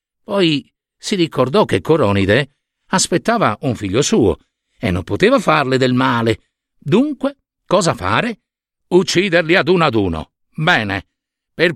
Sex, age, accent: male, 50-69, native